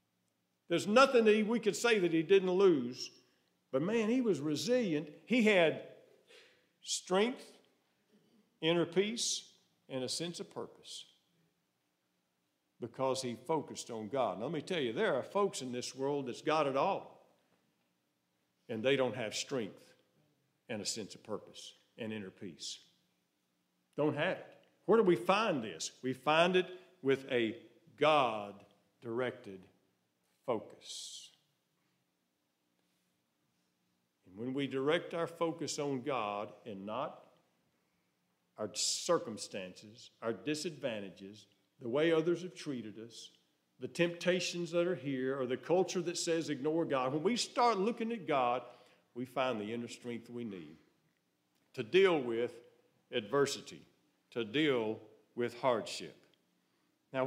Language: English